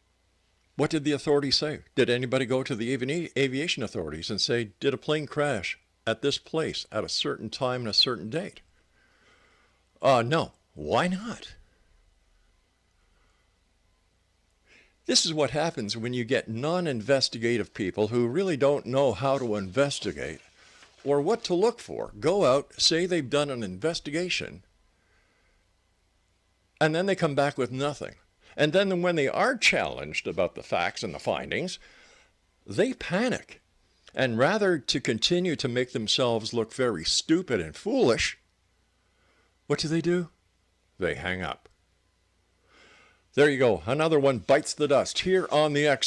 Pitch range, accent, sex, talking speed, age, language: 105-155 Hz, American, male, 145 wpm, 60-79, English